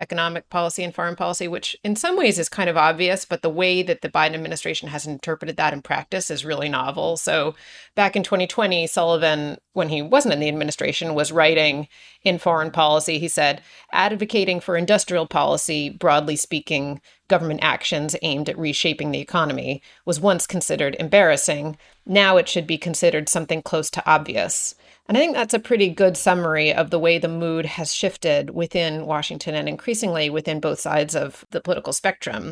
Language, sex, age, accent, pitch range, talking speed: English, female, 30-49, American, 160-195 Hz, 180 wpm